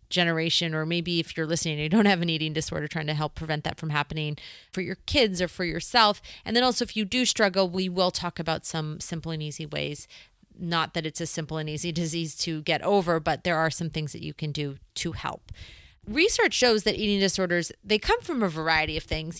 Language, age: English, 30-49